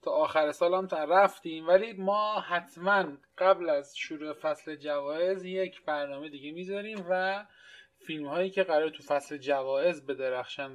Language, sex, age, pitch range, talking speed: Persian, male, 20-39, 140-180 Hz, 145 wpm